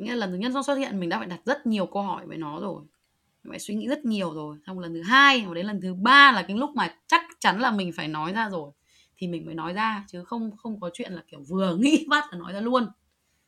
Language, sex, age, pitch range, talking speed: Vietnamese, female, 20-39, 180-255 Hz, 295 wpm